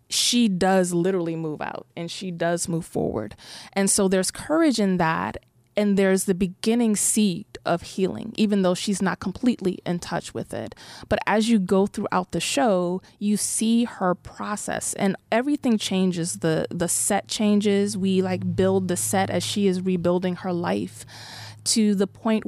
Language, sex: English, female